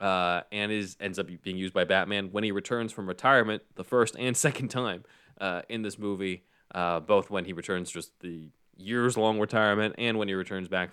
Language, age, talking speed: English, 20-39, 205 wpm